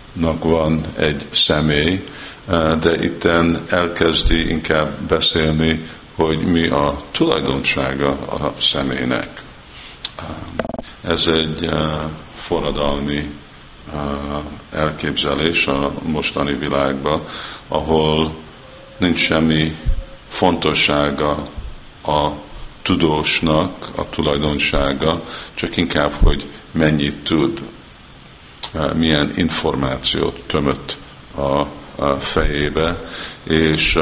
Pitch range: 70-80 Hz